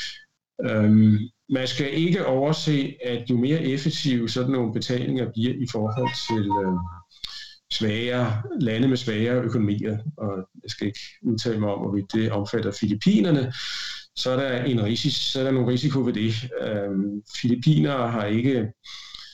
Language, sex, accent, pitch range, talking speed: Danish, male, native, 105-130 Hz, 145 wpm